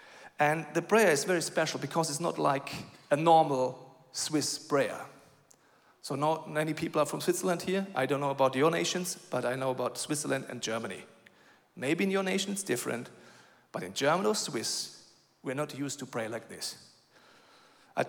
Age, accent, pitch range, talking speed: 40-59, German, 140-175 Hz, 180 wpm